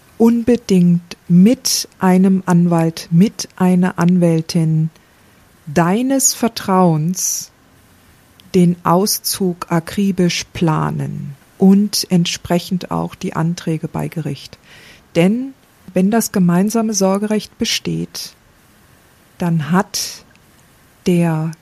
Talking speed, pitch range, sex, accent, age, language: 80 wpm, 170-210 Hz, female, German, 50-69, German